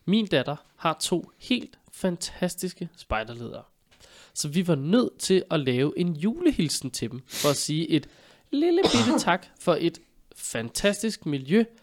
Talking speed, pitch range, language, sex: 145 wpm, 125-180 Hz, Danish, male